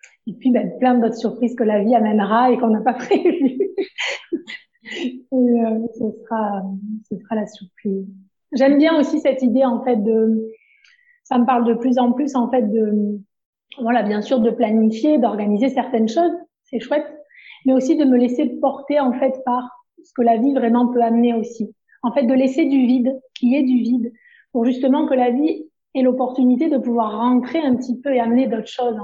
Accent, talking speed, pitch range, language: French, 195 wpm, 225-270 Hz, French